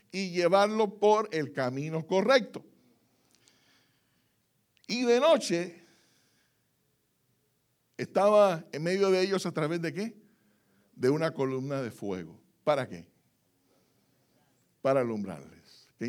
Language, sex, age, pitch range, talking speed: Spanish, male, 60-79, 145-230 Hz, 105 wpm